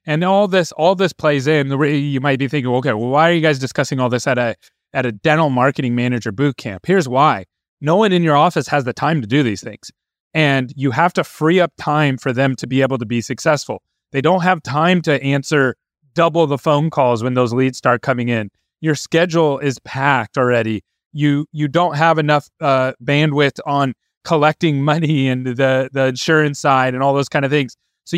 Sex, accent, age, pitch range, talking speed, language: male, American, 30-49, 135-170 Hz, 220 wpm, English